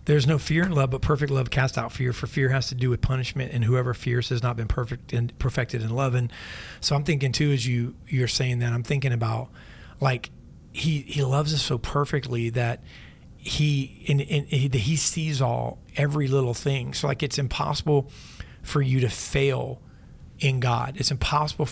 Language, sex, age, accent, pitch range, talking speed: English, male, 40-59, American, 125-145 Hz, 200 wpm